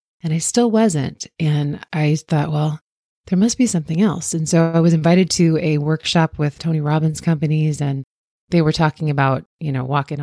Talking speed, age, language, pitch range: 195 wpm, 30-49, English, 145-180 Hz